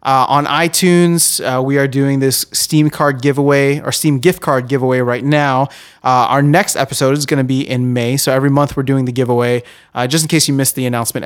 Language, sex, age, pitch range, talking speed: English, male, 30-49, 125-155 Hz, 230 wpm